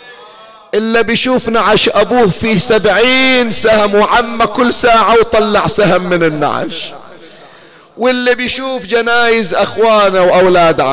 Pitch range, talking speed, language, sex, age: 180-215 Hz, 105 wpm, Arabic, male, 50-69